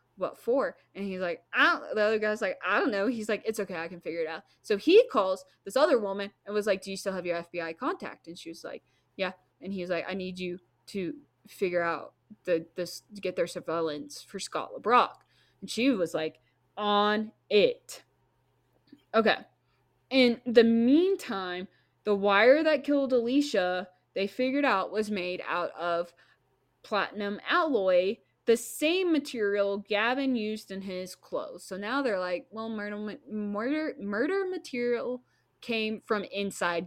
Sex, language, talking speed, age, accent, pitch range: female, English, 175 wpm, 20-39, American, 185-255 Hz